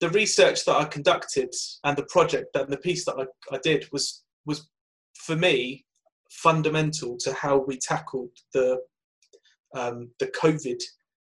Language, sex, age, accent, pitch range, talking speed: English, male, 30-49, British, 135-155 Hz, 150 wpm